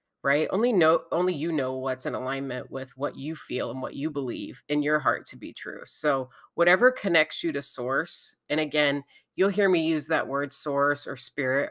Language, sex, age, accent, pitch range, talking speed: English, female, 30-49, American, 140-170 Hz, 205 wpm